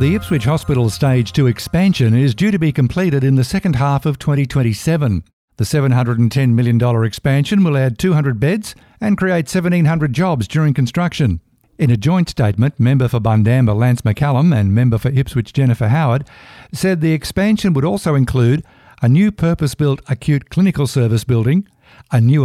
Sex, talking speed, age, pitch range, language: male, 160 wpm, 60-79, 120-165 Hz, English